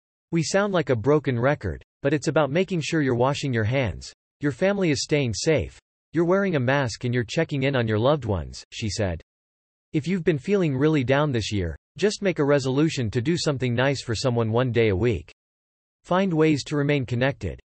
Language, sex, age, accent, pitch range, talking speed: English, male, 40-59, American, 110-155 Hz, 205 wpm